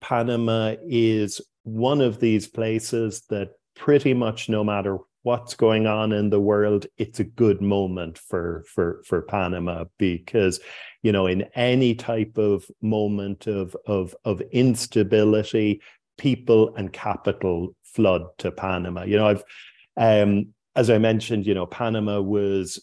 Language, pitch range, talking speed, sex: English, 100-115 Hz, 140 wpm, male